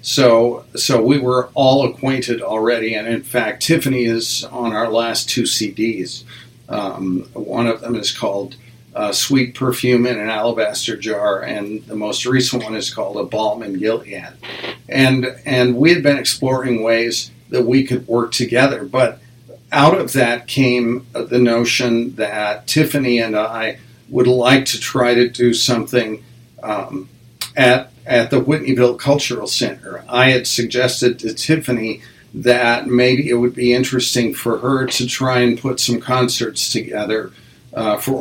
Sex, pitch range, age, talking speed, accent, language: male, 115-125 Hz, 50-69, 155 wpm, American, English